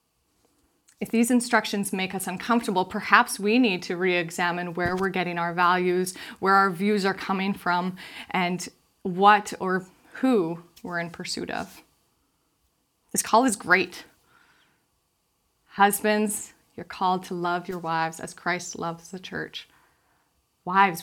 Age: 20-39